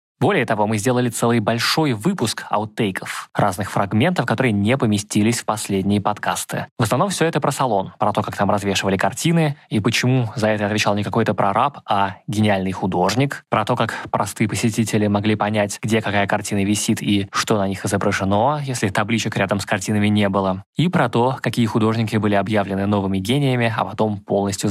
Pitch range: 100-130 Hz